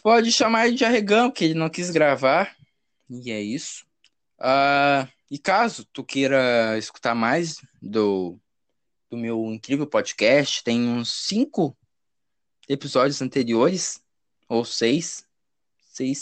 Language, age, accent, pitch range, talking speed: Portuguese, 20-39, Brazilian, 125-175 Hz, 120 wpm